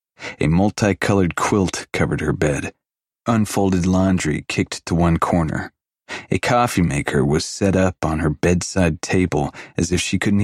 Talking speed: 150 wpm